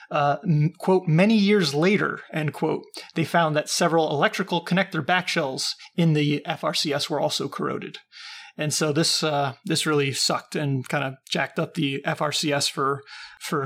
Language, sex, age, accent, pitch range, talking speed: English, male, 30-49, American, 150-185 Hz, 160 wpm